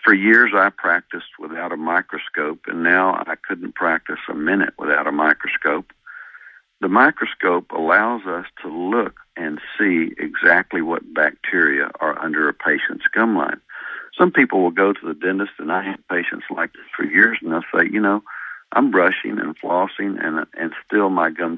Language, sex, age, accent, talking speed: English, male, 60-79, American, 175 wpm